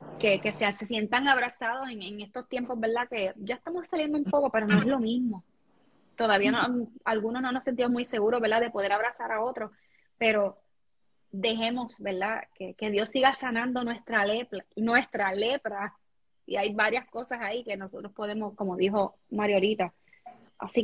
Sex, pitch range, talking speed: female, 205-245 Hz, 175 wpm